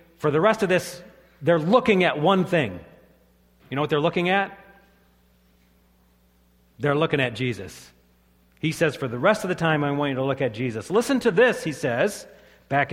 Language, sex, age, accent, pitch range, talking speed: English, male, 40-59, American, 125-195 Hz, 190 wpm